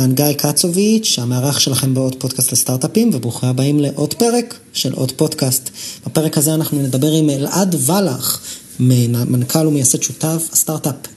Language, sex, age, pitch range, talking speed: Hebrew, male, 30-49, 130-165 Hz, 135 wpm